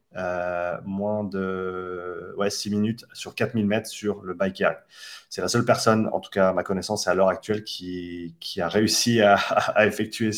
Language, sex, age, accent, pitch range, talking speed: French, male, 30-49, French, 100-120 Hz, 190 wpm